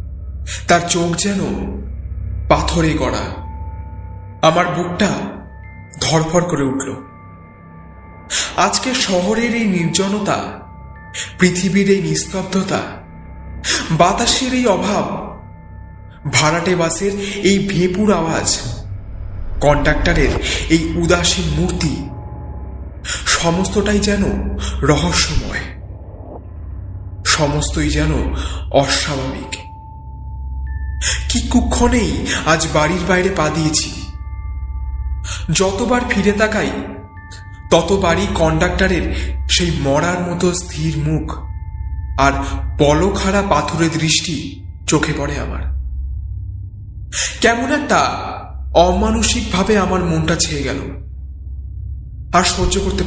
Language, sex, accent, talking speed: Bengali, male, native, 75 wpm